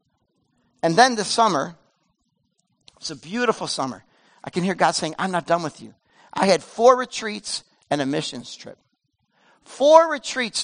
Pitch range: 175-250 Hz